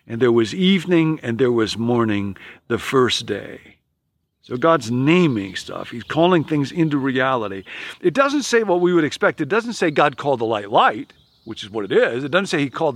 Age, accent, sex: 50-69, American, male